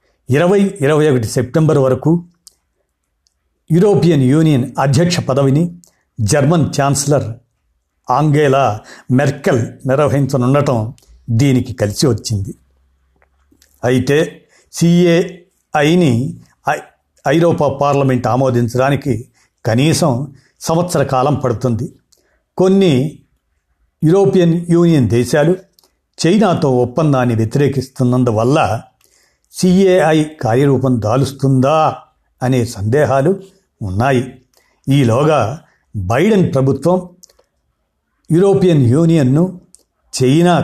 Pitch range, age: 120-155 Hz, 60-79